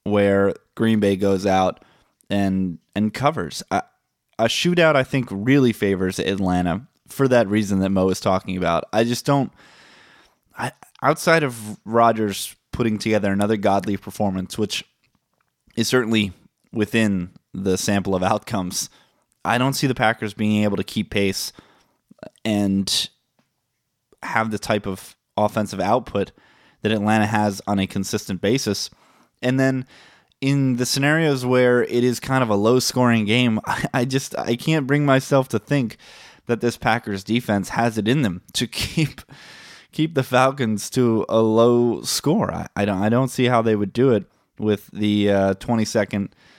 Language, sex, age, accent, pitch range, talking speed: English, male, 20-39, American, 100-125 Hz, 155 wpm